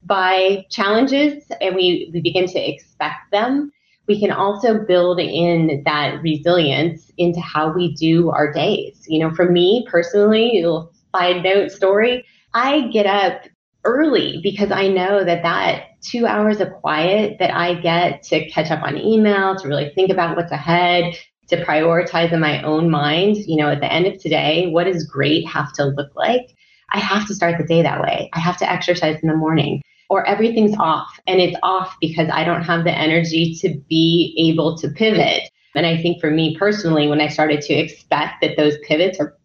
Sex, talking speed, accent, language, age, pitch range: female, 190 wpm, American, English, 20-39, 155-195 Hz